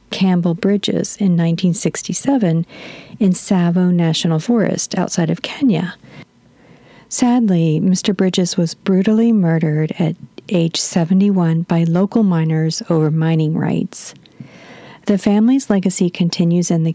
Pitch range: 165-205 Hz